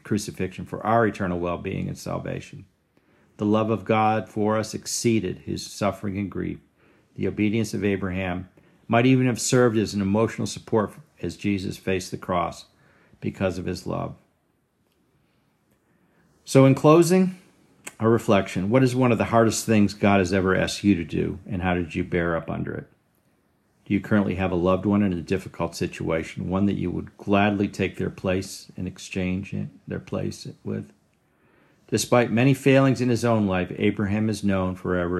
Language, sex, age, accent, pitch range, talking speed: English, male, 50-69, American, 95-115 Hz, 170 wpm